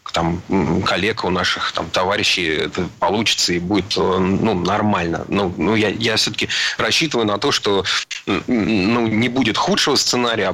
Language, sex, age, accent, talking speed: Russian, male, 30-49, native, 155 wpm